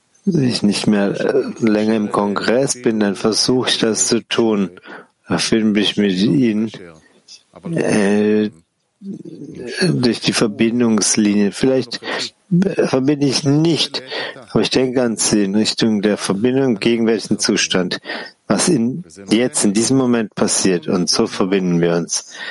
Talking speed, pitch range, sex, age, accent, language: 135 wpm, 95-120 Hz, male, 50-69, German, German